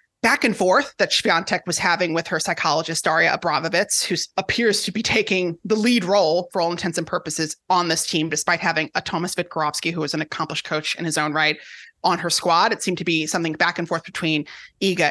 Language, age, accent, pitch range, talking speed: English, 30-49, American, 175-235 Hz, 220 wpm